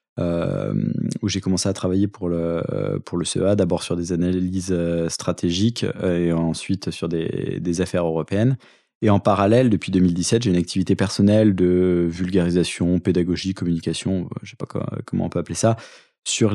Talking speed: 165 wpm